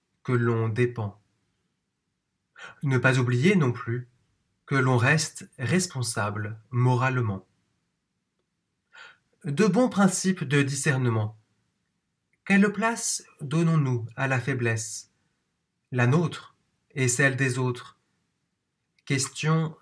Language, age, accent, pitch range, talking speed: French, 30-49, French, 120-150 Hz, 95 wpm